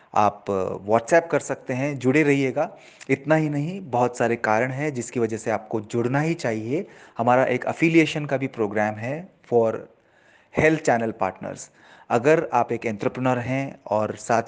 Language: Hindi